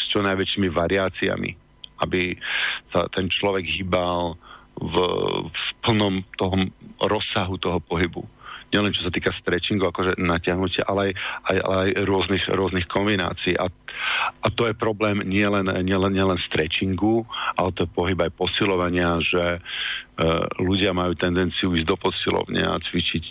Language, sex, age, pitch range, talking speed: Slovak, male, 50-69, 90-100 Hz, 135 wpm